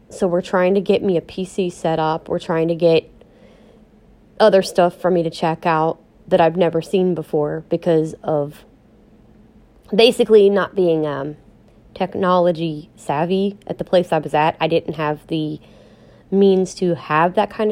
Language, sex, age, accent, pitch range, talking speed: English, female, 30-49, American, 160-195 Hz, 165 wpm